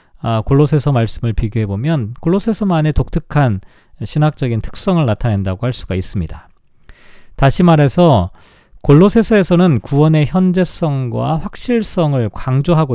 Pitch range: 125-175 Hz